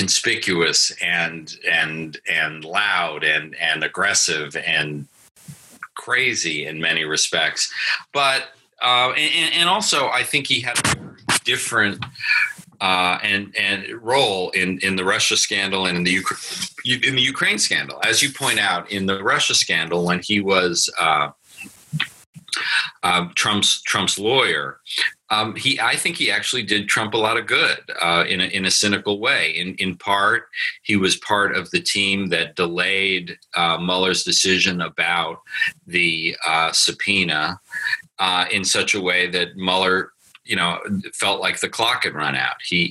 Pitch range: 85-105 Hz